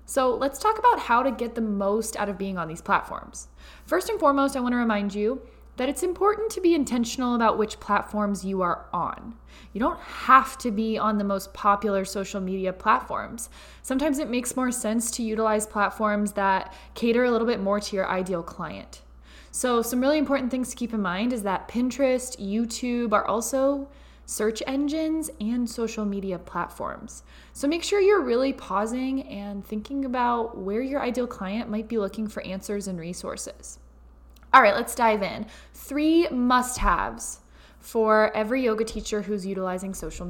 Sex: female